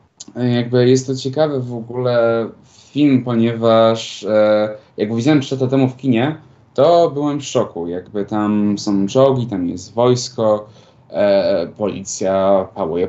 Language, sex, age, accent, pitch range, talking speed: Polish, male, 20-39, native, 110-125 Hz, 130 wpm